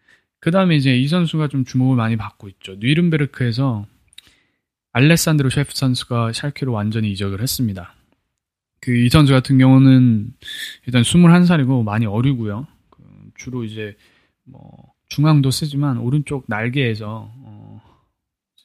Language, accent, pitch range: Korean, native, 110-140 Hz